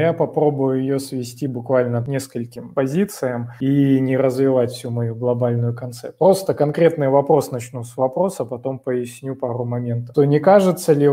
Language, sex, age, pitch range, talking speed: Russian, male, 20-39, 130-160 Hz, 155 wpm